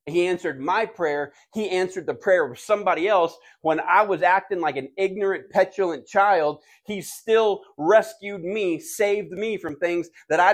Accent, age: American, 30-49